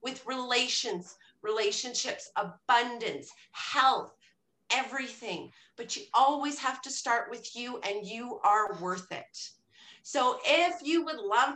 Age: 30-49